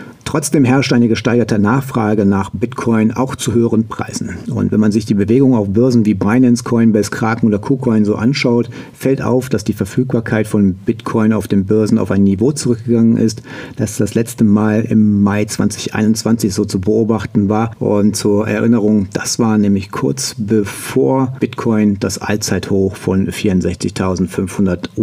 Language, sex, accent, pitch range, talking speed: German, male, German, 100-120 Hz, 160 wpm